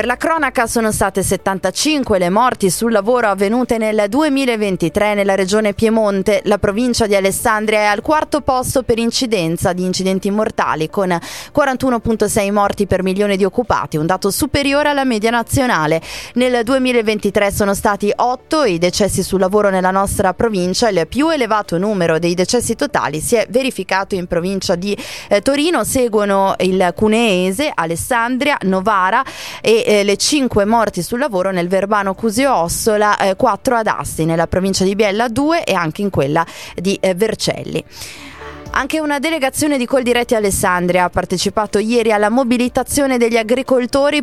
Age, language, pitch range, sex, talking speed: 20-39, Italian, 190-250 Hz, female, 155 wpm